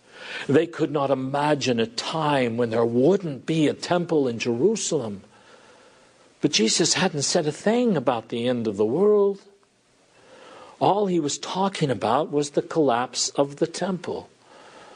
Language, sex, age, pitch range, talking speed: English, male, 50-69, 125-180 Hz, 150 wpm